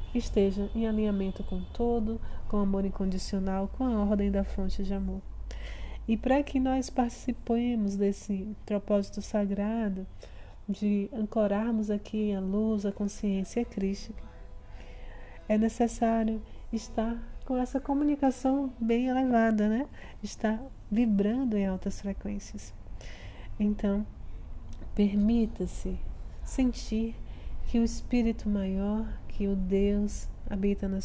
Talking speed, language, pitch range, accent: 115 wpm, Portuguese, 195-230 Hz, Brazilian